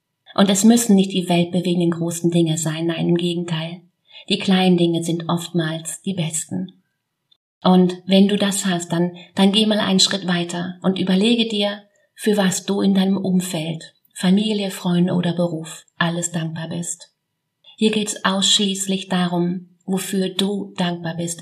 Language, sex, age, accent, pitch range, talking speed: German, female, 30-49, German, 170-190 Hz, 155 wpm